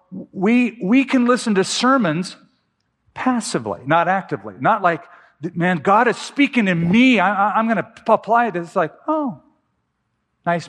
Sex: male